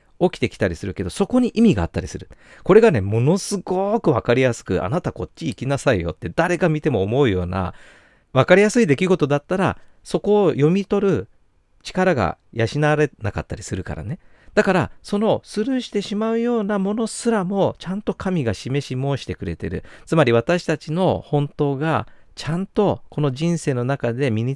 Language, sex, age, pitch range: Japanese, male, 40-59, 110-180 Hz